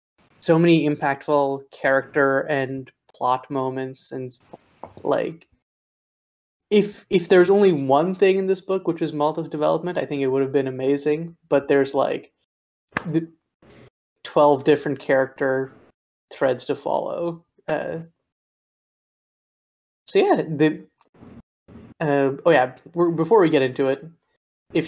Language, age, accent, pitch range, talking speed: English, 20-39, American, 135-165 Hz, 130 wpm